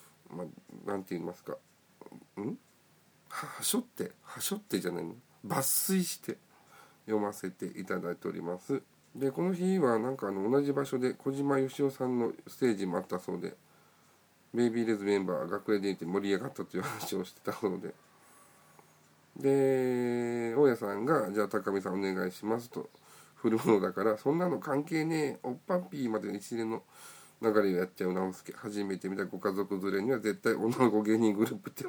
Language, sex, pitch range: Japanese, male, 100-130 Hz